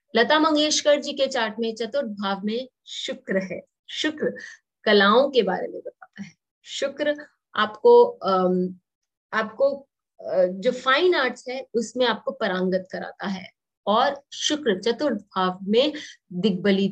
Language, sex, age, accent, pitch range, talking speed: English, female, 30-49, Indian, 195-265 Hz, 120 wpm